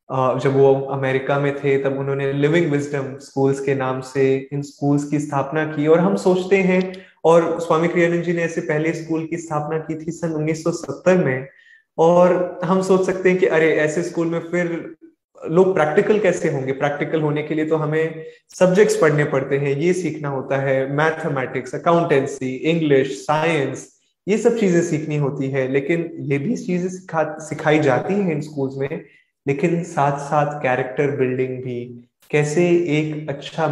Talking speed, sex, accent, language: 170 wpm, male, native, Hindi